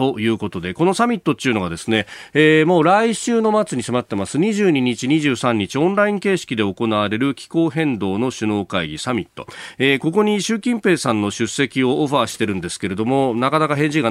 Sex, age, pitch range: male, 40-59, 105-155 Hz